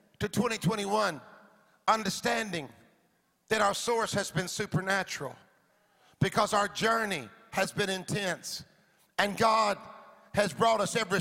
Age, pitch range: 50-69, 190-225 Hz